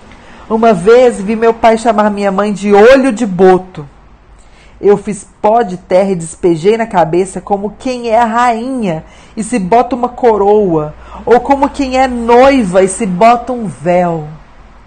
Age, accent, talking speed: 40-59, Brazilian, 165 wpm